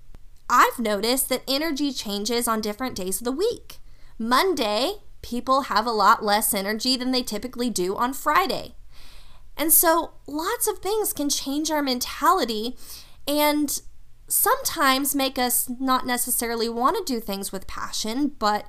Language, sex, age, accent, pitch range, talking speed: English, female, 20-39, American, 220-285 Hz, 150 wpm